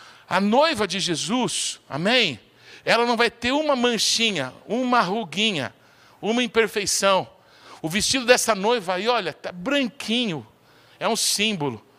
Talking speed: 130 wpm